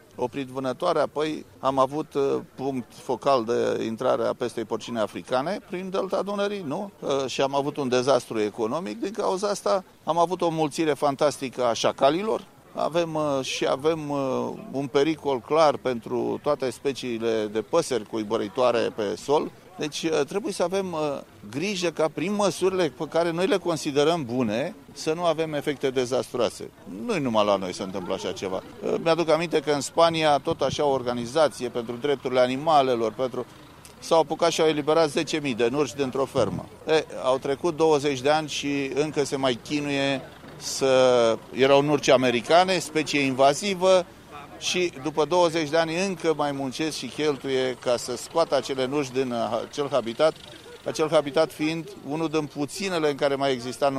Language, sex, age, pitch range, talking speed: Romanian, male, 30-49, 130-160 Hz, 160 wpm